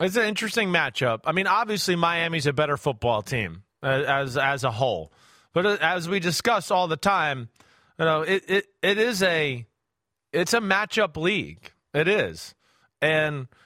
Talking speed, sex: 165 wpm, male